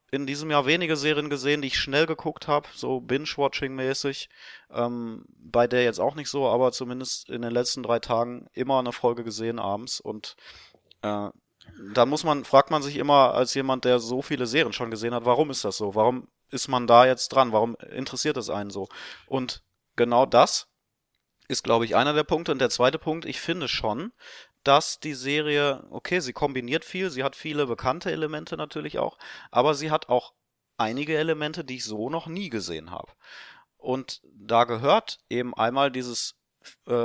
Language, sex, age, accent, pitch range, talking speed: German, male, 30-49, German, 120-145 Hz, 185 wpm